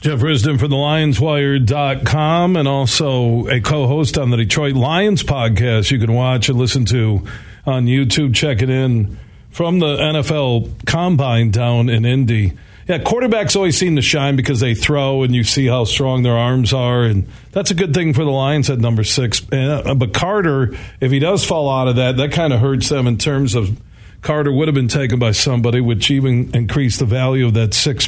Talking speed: 195 wpm